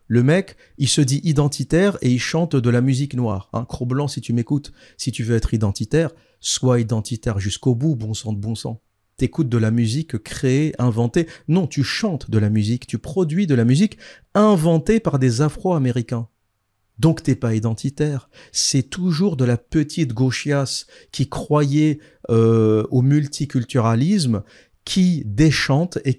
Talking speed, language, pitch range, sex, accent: 165 wpm, French, 110-150 Hz, male, French